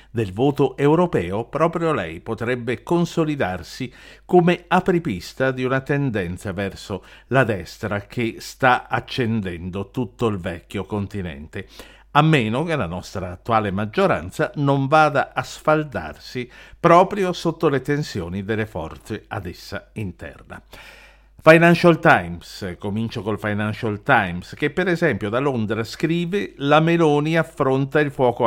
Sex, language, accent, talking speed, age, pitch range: male, Italian, native, 125 wpm, 50-69, 100-150 Hz